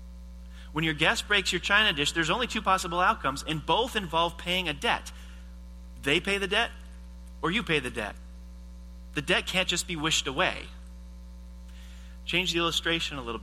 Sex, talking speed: male, 175 wpm